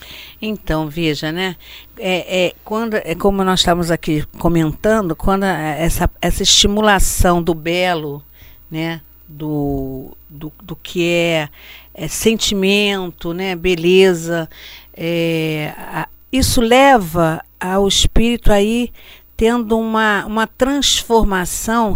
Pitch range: 165-220 Hz